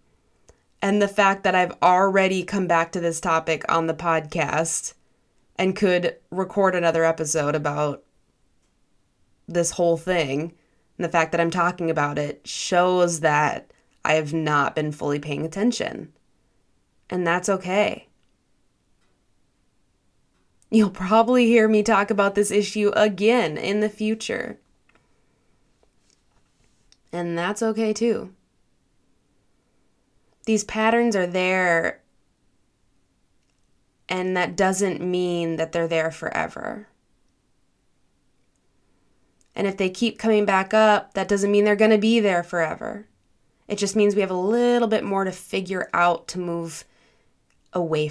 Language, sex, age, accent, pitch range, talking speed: English, female, 20-39, American, 165-205 Hz, 125 wpm